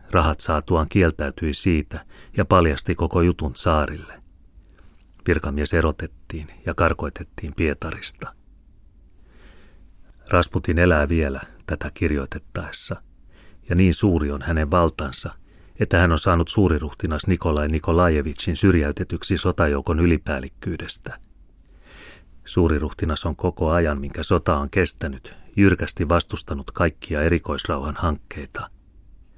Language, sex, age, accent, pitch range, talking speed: Finnish, male, 30-49, native, 75-90 Hz, 100 wpm